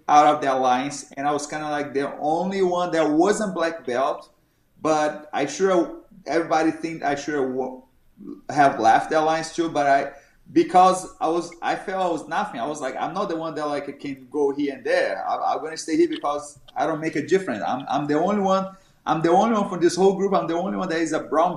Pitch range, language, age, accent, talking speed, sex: 150-185 Hz, English, 30-49, Brazilian, 240 wpm, male